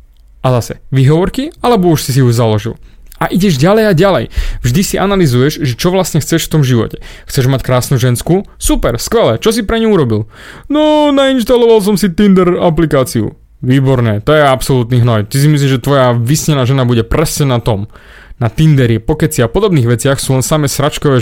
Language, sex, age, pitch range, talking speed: Slovak, male, 20-39, 125-175 Hz, 185 wpm